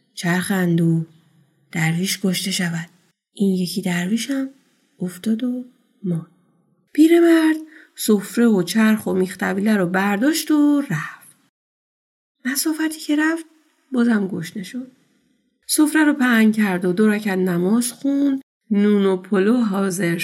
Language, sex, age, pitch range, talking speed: Persian, female, 30-49, 180-240 Hz, 115 wpm